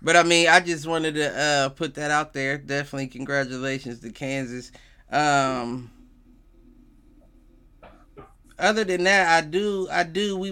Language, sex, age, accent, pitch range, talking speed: English, male, 30-49, American, 130-165 Hz, 145 wpm